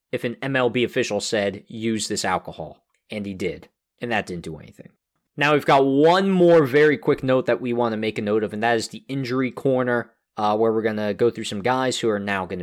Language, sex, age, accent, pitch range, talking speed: English, male, 20-39, American, 115-145 Hz, 240 wpm